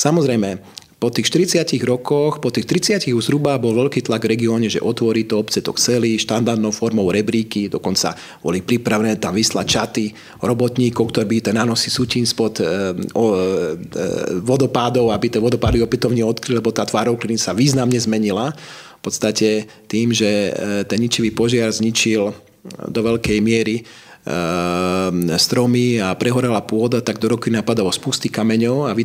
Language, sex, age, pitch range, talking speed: Slovak, male, 30-49, 110-130 Hz, 155 wpm